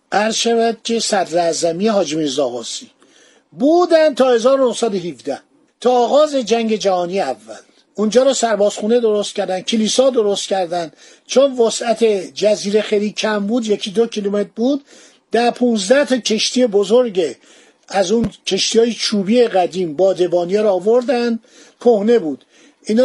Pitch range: 200-245 Hz